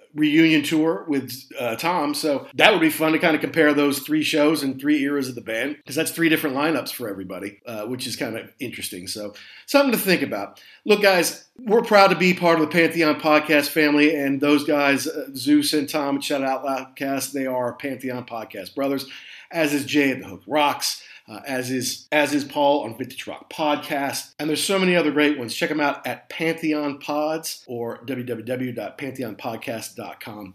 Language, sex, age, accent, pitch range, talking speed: English, male, 50-69, American, 140-175 Hz, 195 wpm